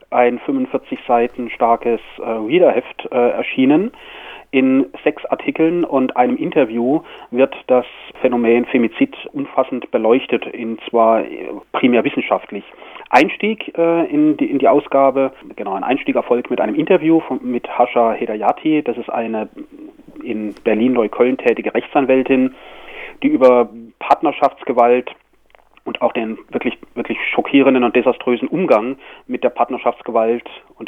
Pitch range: 120-150 Hz